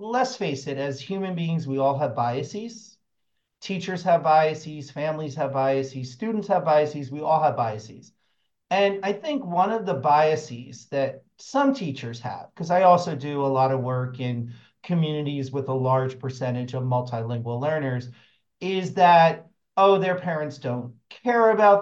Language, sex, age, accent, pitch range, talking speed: English, male, 40-59, American, 135-195 Hz, 160 wpm